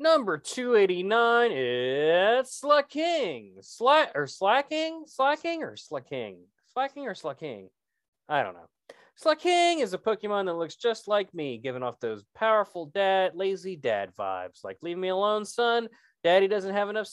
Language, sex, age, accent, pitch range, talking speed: English, male, 20-39, American, 150-235 Hz, 150 wpm